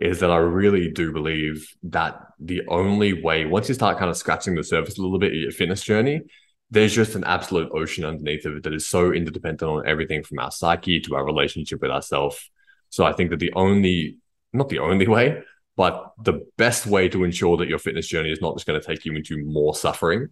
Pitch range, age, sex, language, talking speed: 80-95 Hz, 20-39, male, English, 225 wpm